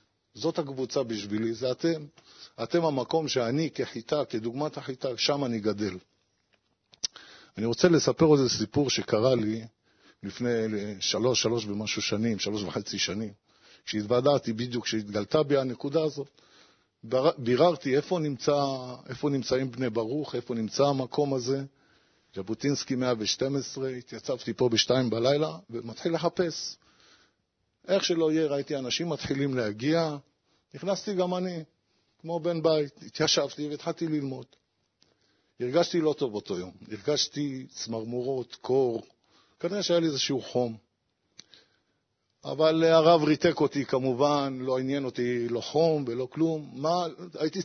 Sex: male